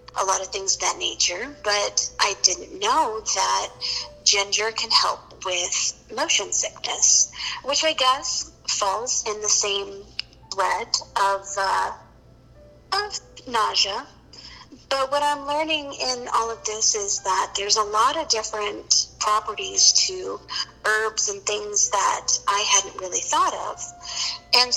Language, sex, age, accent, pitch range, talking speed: English, female, 50-69, American, 210-315 Hz, 140 wpm